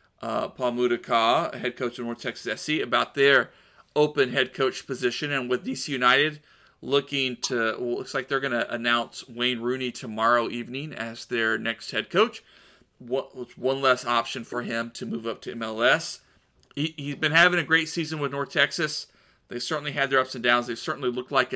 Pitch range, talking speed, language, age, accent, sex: 125-160 Hz, 195 wpm, English, 40-59, American, male